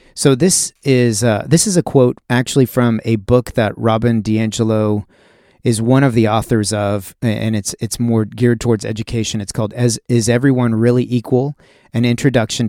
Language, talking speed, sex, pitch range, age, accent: English, 175 wpm, male, 110-130 Hz, 30-49, American